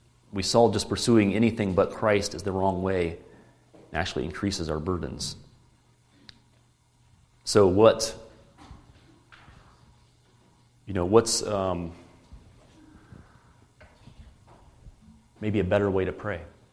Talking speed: 100 wpm